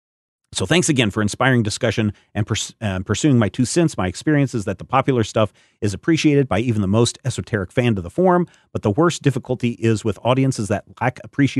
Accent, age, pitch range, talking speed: American, 40-59, 105-135 Hz, 205 wpm